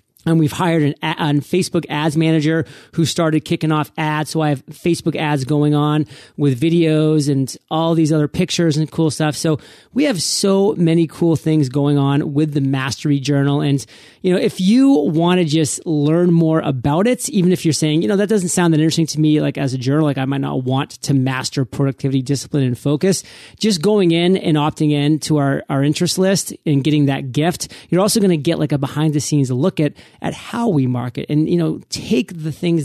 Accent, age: American, 30-49